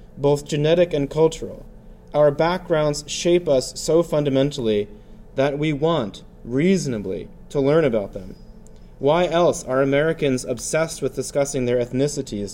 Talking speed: 130 wpm